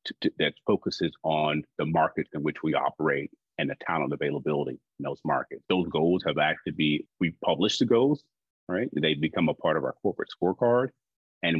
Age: 30-49